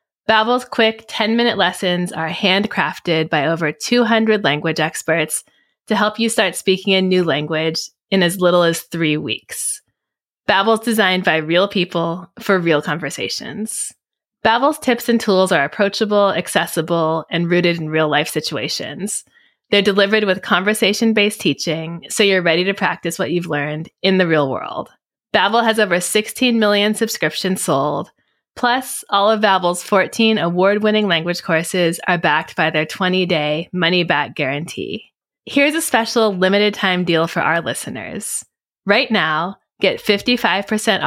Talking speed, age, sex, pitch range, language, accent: 140 wpm, 20-39, female, 165-215 Hz, English, American